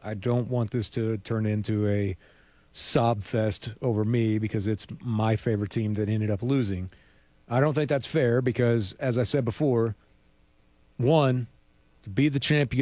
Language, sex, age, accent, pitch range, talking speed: English, male, 40-59, American, 110-145 Hz, 175 wpm